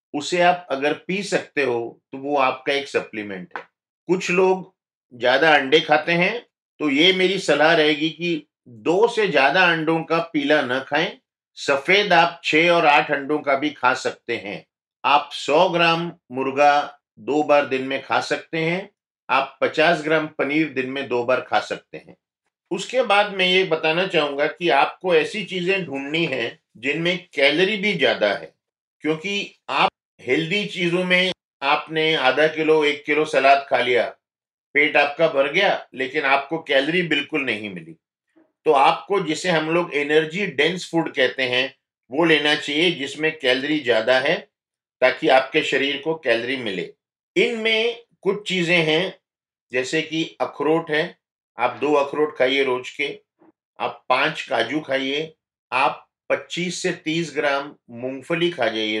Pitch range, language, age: 140-175 Hz, Hindi, 50-69